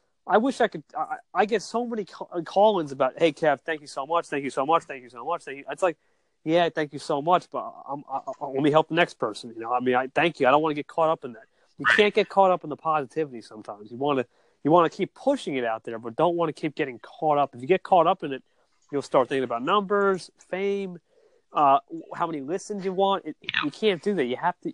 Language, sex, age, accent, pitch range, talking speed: English, male, 30-49, American, 145-195 Hz, 280 wpm